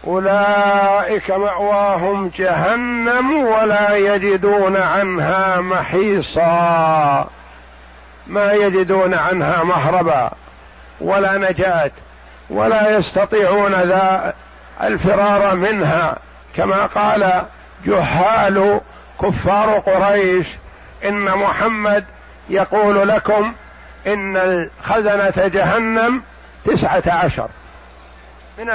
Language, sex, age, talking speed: Arabic, male, 60-79, 70 wpm